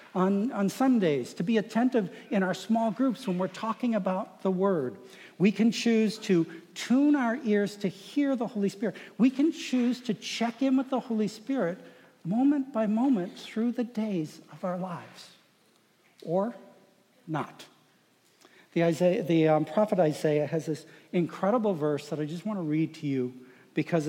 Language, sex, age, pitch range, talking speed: English, male, 60-79, 155-215 Hz, 165 wpm